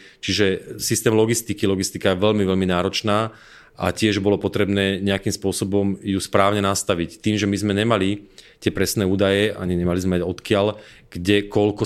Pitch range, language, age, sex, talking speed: 95-105 Hz, Czech, 30-49, male, 160 wpm